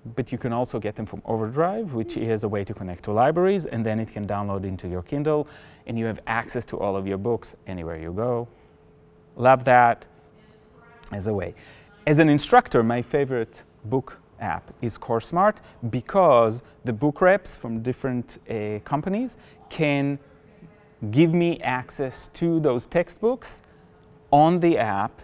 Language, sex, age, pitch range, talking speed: English, male, 30-49, 110-150 Hz, 160 wpm